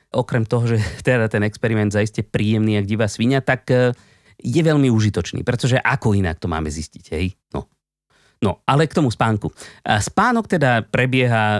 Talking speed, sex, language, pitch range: 160 wpm, male, Slovak, 100-145 Hz